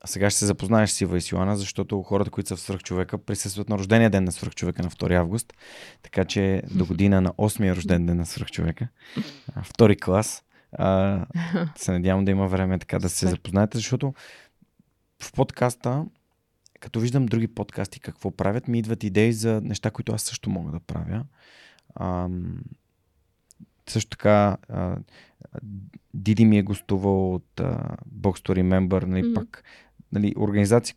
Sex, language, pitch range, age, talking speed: male, Bulgarian, 95-110 Hz, 30-49, 145 wpm